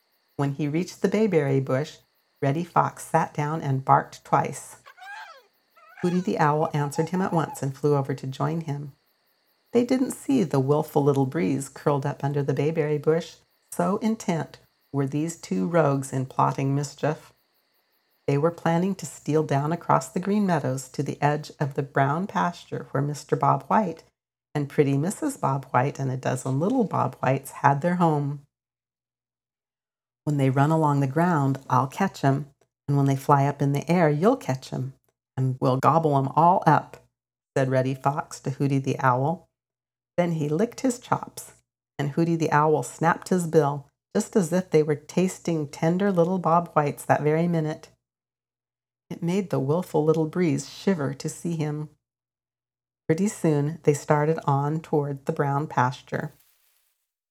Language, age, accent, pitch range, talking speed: English, 50-69, American, 140-170 Hz, 170 wpm